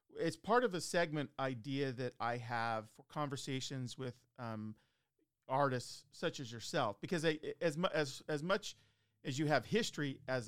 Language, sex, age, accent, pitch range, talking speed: English, male, 40-59, American, 115-145 Hz, 165 wpm